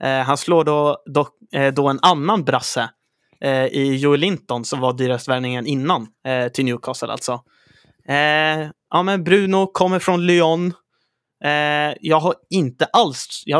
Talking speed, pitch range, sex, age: 150 wpm, 130-150 Hz, male, 30-49